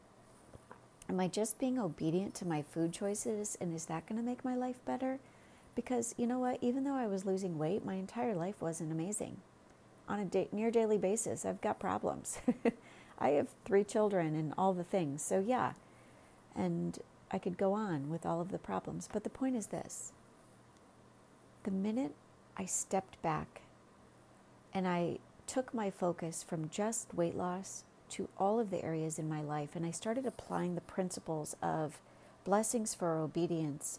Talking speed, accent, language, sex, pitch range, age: 175 wpm, American, English, female, 165-225 Hz, 40-59